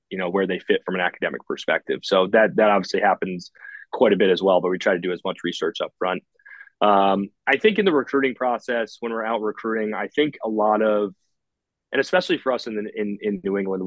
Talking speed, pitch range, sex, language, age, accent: 235 wpm, 105-130 Hz, male, English, 30-49, American